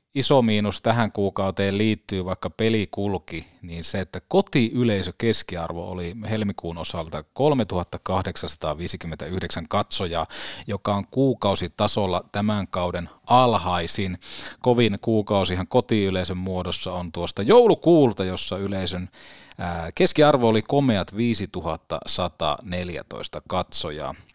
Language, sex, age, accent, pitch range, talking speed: Finnish, male, 30-49, native, 95-120 Hz, 90 wpm